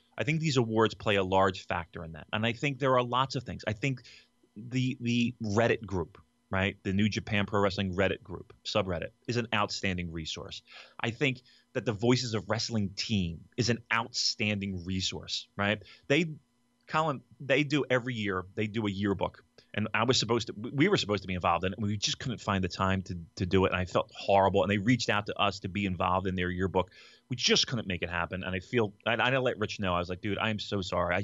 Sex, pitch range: male, 95-120 Hz